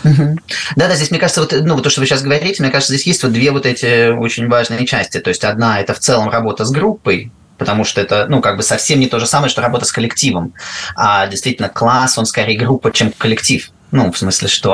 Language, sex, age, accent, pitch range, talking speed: Russian, male, 20-39, native, 110-135 Hz, 235 wpm